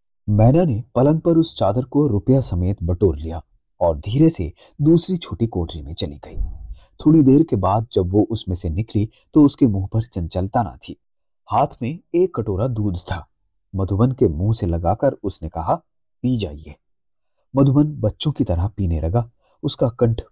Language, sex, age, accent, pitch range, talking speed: Hindi, male, 30-49, native, 90-130 Hz, 175 wpm